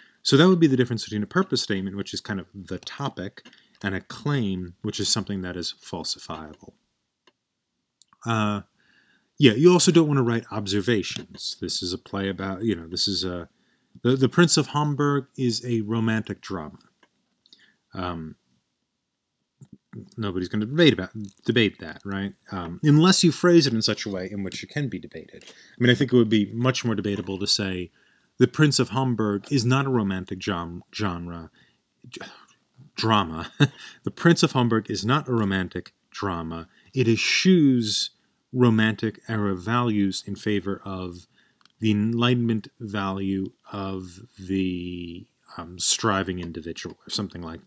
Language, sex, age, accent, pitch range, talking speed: English, male, 30-49, American, 95-125 Hz, 160 wpm